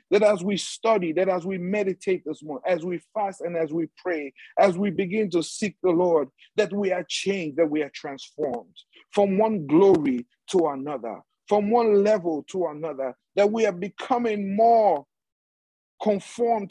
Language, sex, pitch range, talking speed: English, male, 175-225 Hz, 170 wpm